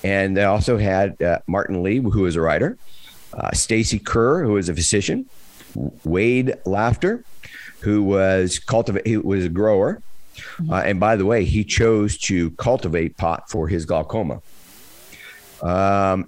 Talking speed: 150 wpm